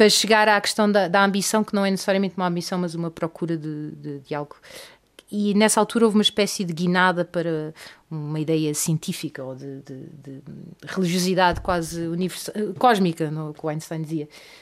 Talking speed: 185 wpm